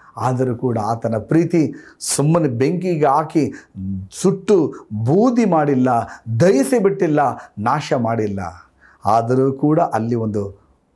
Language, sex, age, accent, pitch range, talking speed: Kannada, male, 50-69, native, 115-195 Hz, 100 wpm